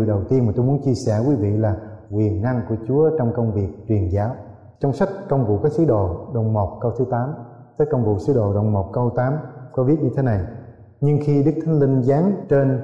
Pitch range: 110-135 Hz